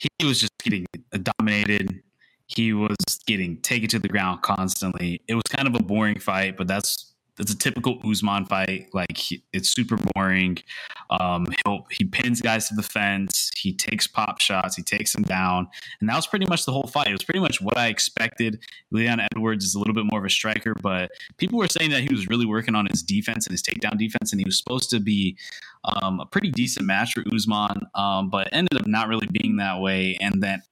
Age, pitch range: 20-39, 95-115 Hz